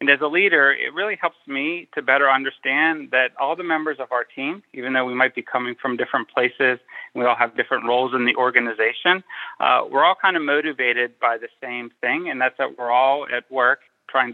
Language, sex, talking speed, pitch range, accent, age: English, male, 220 wpm, 120-140 Hz, American, 30-49